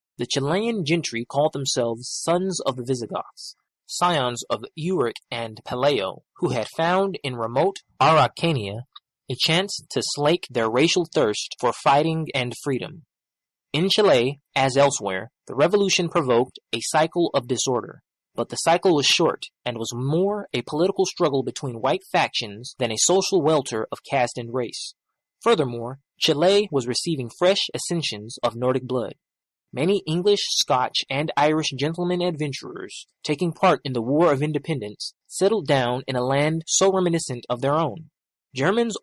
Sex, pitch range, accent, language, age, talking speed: male, 125-180 Hz, American, English, 20-39, 150 wpm